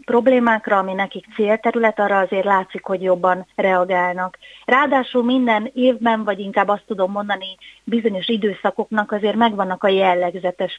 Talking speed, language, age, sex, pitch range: 135 wpm, Hungarian, 30-49, female, 190-235 Hz